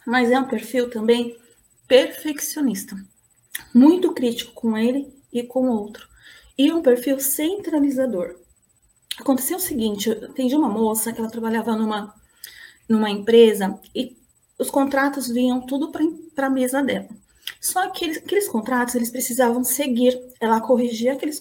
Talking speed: 135 wpm